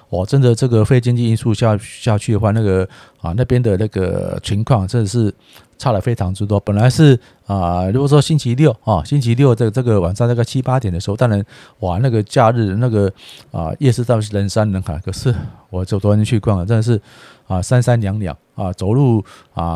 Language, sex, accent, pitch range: Chinese, male, native, 105-130 Hz